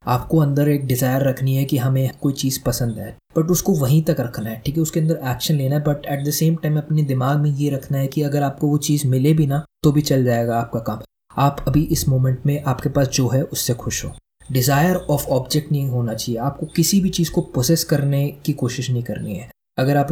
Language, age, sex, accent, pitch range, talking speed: Hindi, 20-39, male, native, 130-155 Hz, 245 wpm